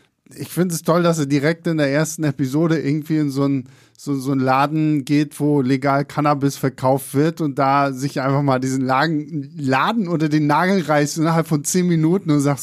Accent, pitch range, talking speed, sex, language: German, 130-160 Hz, 200 wpm, male, German